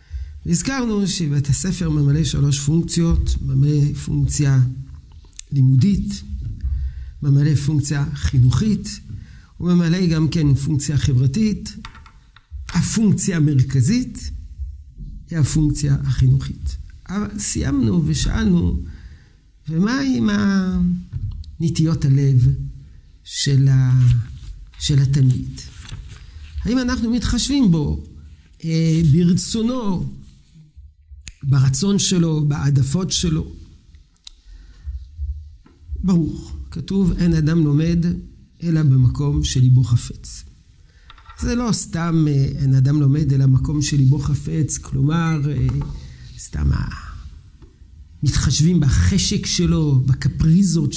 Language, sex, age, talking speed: Hebrew, male, 50-69, 80 wpm